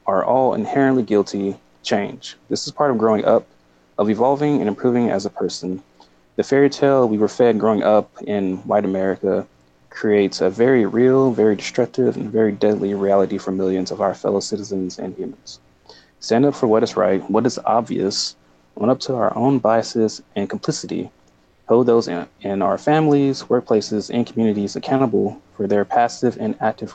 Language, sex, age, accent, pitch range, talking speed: English, male, 20-39, American, 95-125 Hz, 175 wpm